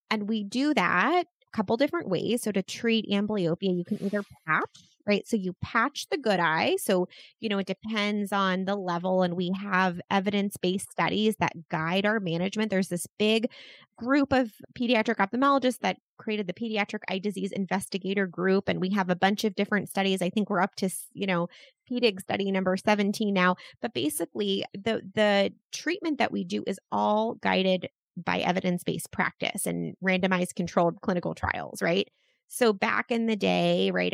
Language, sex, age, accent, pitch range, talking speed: English, female, 20-39, American, 180-230 Hz, 180 wpm